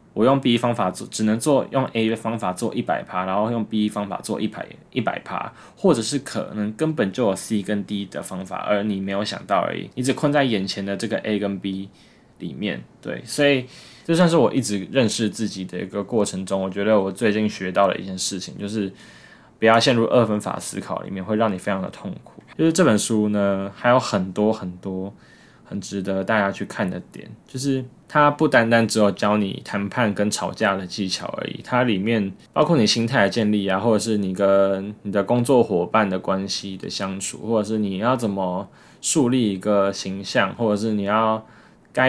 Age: 20-39